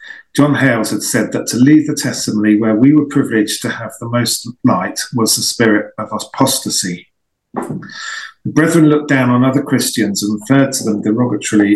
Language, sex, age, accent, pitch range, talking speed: English, male, 40-59, British, 110-140 Hz, 180 wpm